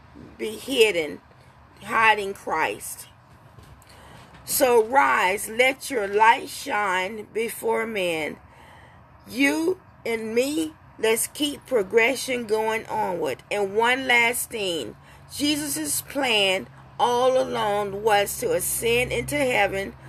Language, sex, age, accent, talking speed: English, female, 40-59, American, 100 wpm